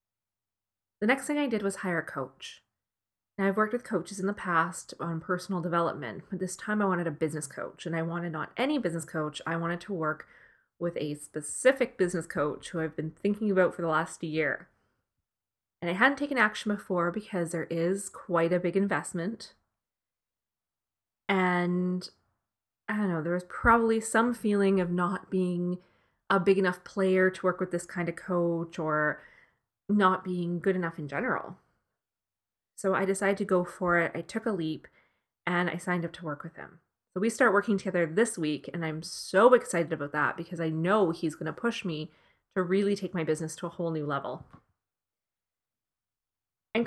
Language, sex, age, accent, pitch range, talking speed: English, female, 20-39, American, 160-200 Hz, 185 wpm